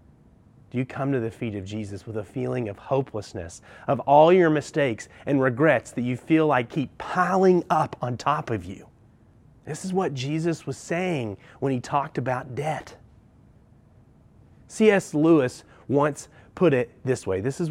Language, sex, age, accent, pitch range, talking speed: English, male, 30-49, American, 115-150 Hz, 165 wpm